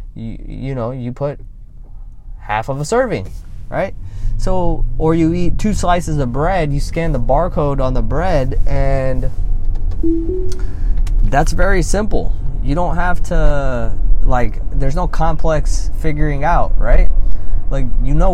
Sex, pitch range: male, 100-155 Hz